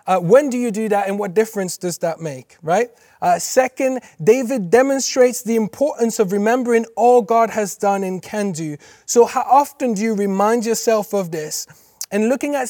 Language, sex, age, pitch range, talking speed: English, male, 30-49, 180-225 Hz, 190 wpm